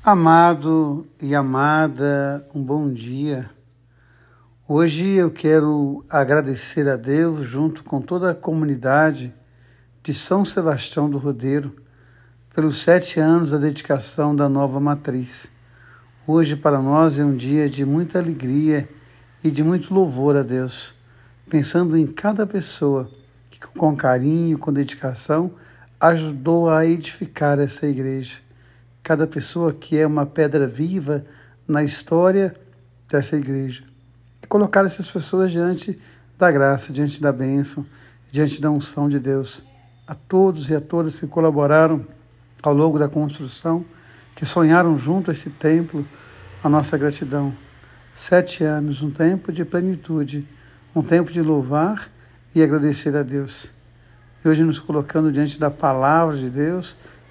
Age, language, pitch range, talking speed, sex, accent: 60-79, Portuguese, 135-160 Hz, 135 wpm, male, Brazilian